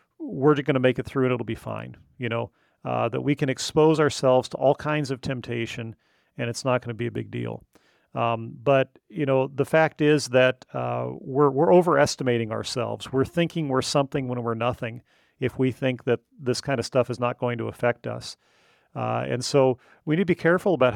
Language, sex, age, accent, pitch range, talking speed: English, male, 40-59, American, 120-150 Hz, 215 wpm